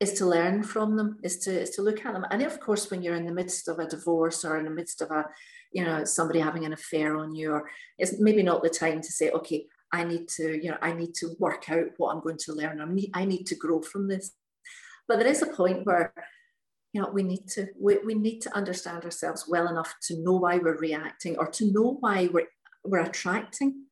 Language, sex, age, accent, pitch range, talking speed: English, female, 40-59, British, 165-210 Hz, 250 wpm